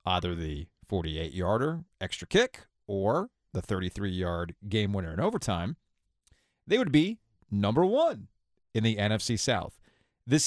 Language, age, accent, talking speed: English, 40-59, American, 125 wpm